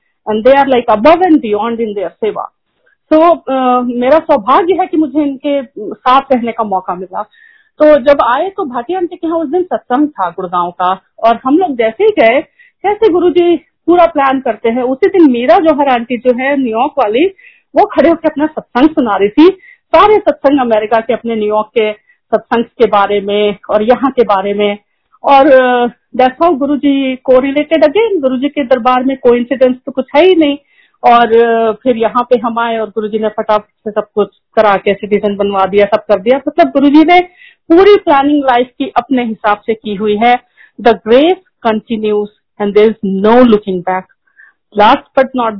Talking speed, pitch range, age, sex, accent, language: 190 wpm, 225-310 Hz, 40-59, female, native, Hindi